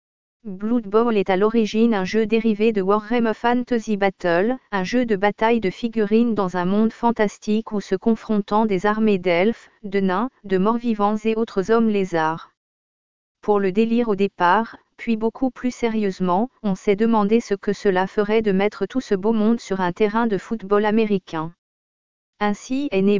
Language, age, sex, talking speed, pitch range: French, 40-59, female, 175 wpm, 195-230 Hz